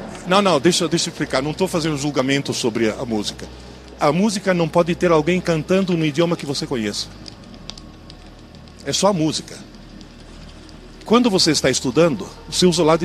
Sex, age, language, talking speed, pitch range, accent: male, 40-59, Portuguese, 175 wpm, 125-180 Hz, Brazilian